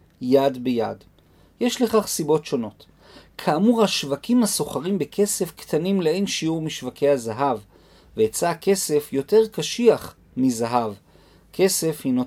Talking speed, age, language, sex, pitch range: 110 wpm, 40-59, Hebrew, male, 130-190 Hz